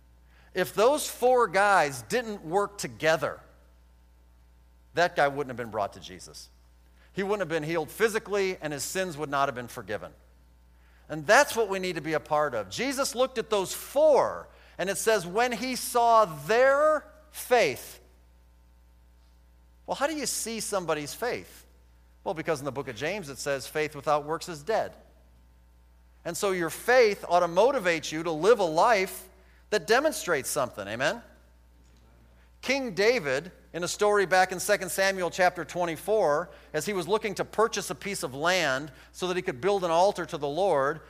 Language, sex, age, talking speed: English, male, 40-59, 175 wpm